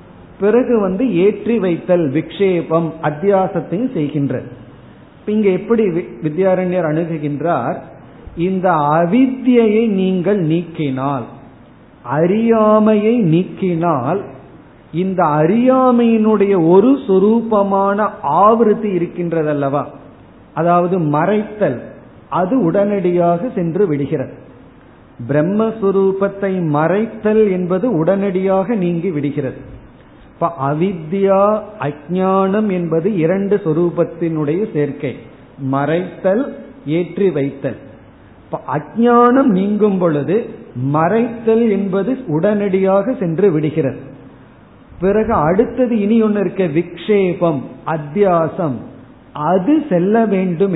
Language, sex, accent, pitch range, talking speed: Tamil, male, native, 150-205 Hz, 75 wpm